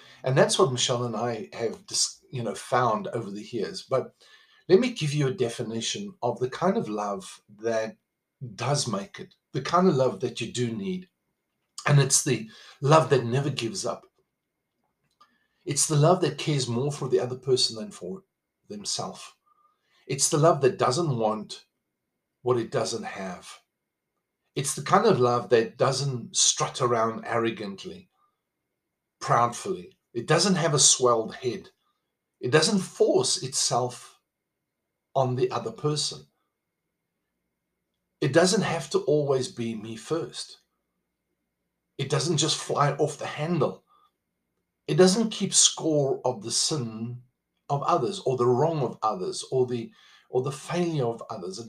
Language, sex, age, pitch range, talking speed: English, male, 50-69, 115-160 Hz, 150 wpm